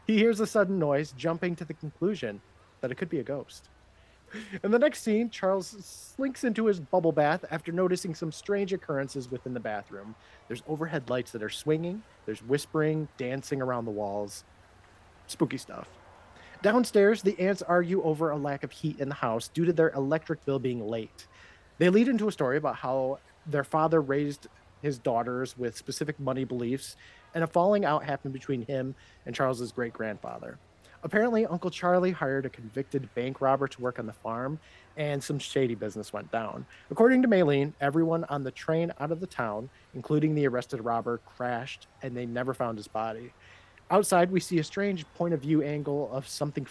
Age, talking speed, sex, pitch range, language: 30-49, 180 wpm, male, 120-165 Hz, English